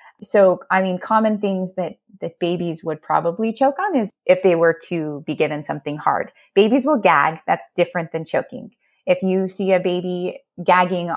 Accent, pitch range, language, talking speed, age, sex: American, 170-215 Hz, English, 185 wpm, 20-39, female